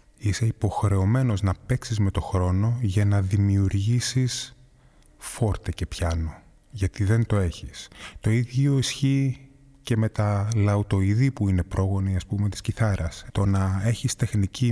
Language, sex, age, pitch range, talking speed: Greek, male, 20-39, 95-115 Hz, 145 wpm